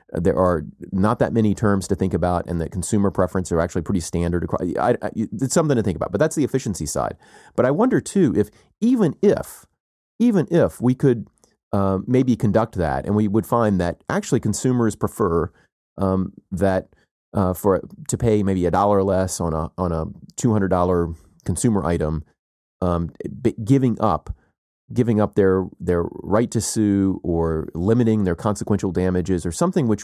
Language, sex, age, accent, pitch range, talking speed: English, male, 30-49, American, 90-110 Hz, 175 wpm